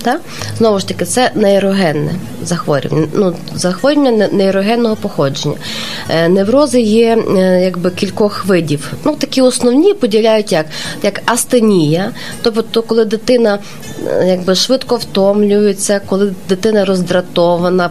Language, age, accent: Ukrainian, 20-39, native